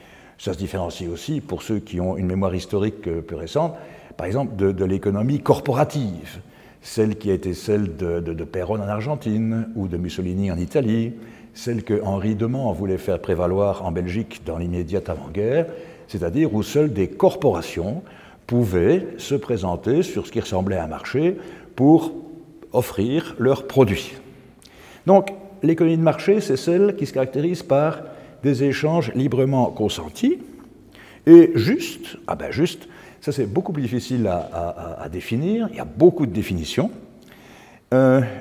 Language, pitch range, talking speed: French, 105-165 Hz, 160 wpm